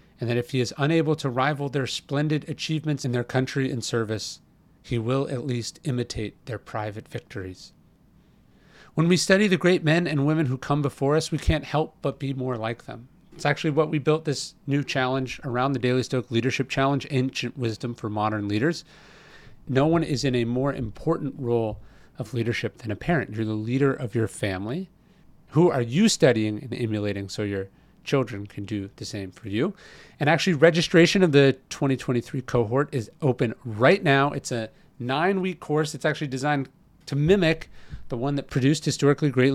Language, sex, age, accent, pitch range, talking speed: English, male, 40-59, American, 120-155 Hz, 185 wpm